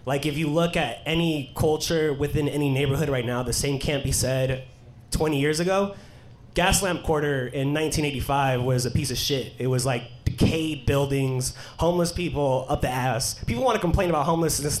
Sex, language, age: male, English, 20-39